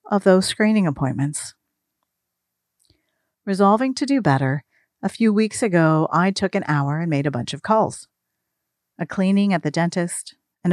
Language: English